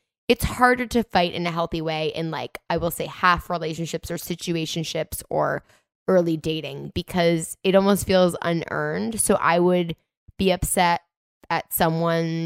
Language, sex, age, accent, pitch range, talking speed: English, female, 10-29, American, 160-180 Hz, 155 wpm